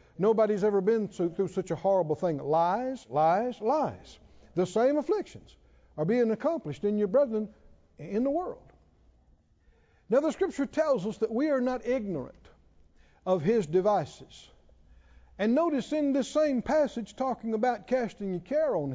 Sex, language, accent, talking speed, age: male, English, American, 150 wpm, 60-79